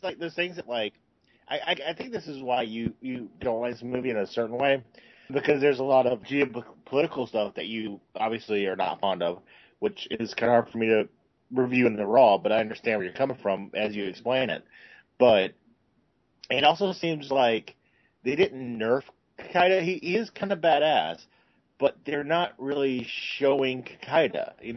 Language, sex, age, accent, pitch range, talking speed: English, male, 30-49, American, 105-140 Hz, 195 wpm